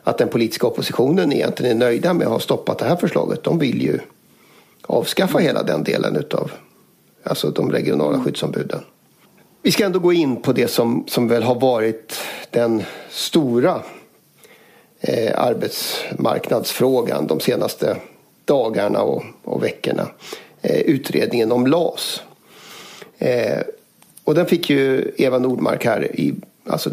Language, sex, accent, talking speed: Swedish, male, native, 140 wpm